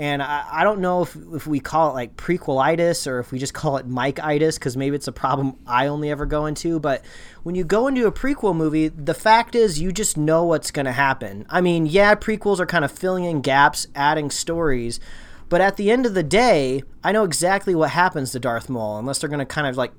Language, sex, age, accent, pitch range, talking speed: English, male, 30-49, American, 130-170 Hz, 235 wpm